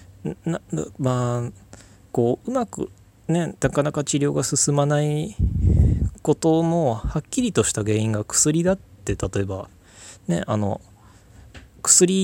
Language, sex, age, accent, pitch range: Japanese, male, 20-39, native, 100-150 Hz